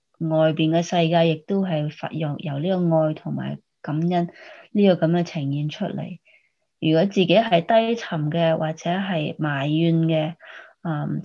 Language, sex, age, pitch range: Chinese, female, 20-39, 155-190 Hz